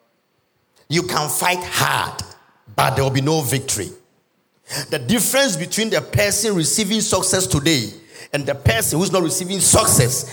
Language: English